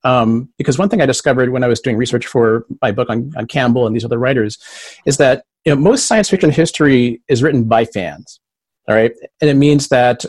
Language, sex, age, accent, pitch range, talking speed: English, male, 40-59, American, 115-145 Hz, 225 wpm